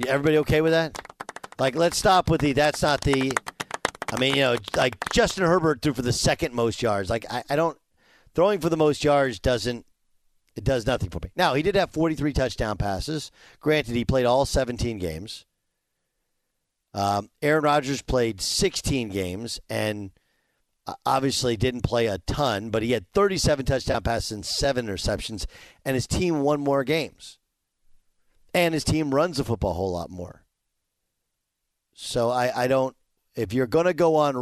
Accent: American